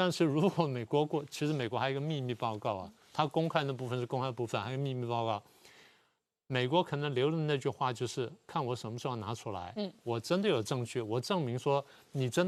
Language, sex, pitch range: Chinese, male, 120-155 Hz